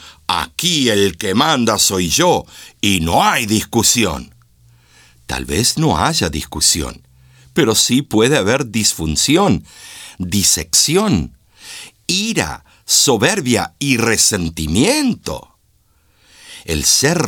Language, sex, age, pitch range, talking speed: Spanish, male, 60-79, 80-130 Hz, 95 wpm